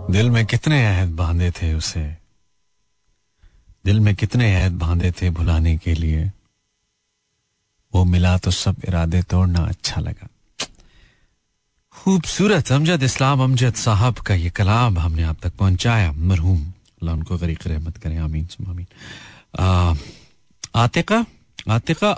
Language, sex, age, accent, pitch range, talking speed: Hindi, male, 40-59, native, 90-125 Hz, 110 wpm